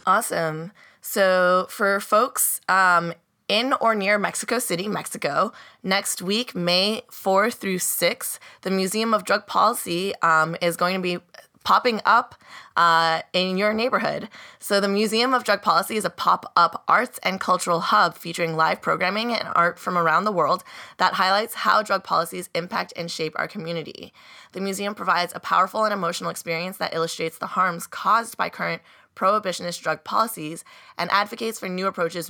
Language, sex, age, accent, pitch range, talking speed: English, female, 20-39, American, 170-200 Hz, 165 wpm